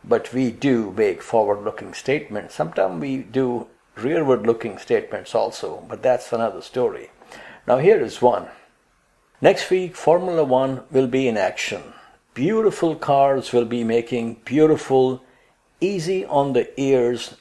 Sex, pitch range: male, 120-170 Hz